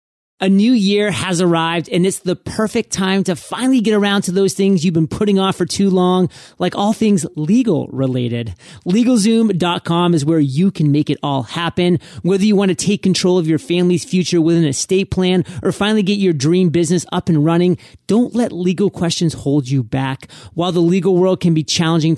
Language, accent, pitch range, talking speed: English, American, 155-190 Hz, 205 wpm